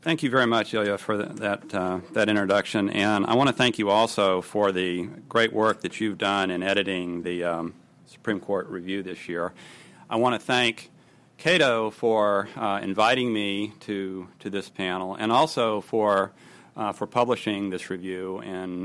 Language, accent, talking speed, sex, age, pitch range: English, American, 175 wpm, male, 40-59, 90-110 Hz